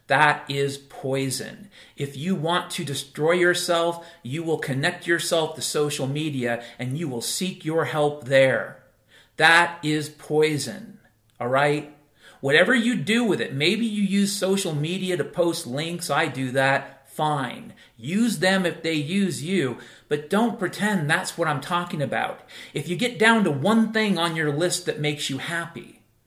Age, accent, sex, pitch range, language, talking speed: 40-59, American, male, 140-190 Hz, English, 165 wpm